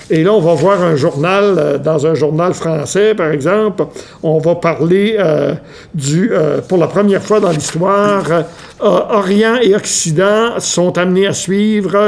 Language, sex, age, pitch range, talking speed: French, male, 60-79, 155-195 Hz, 165 wpm